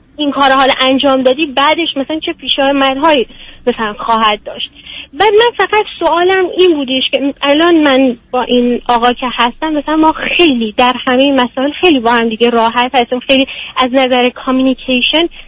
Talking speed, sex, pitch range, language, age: 175 wpm, female, 250-300 Hz, Persian, 30-49